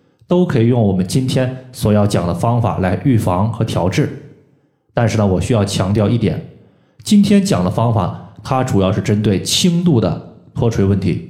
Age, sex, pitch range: 20-39, male, 105-145 Hz